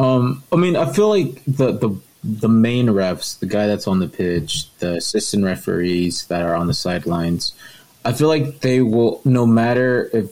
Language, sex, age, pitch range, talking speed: English, male, 20-39, 95-115 Hz, 190 wpm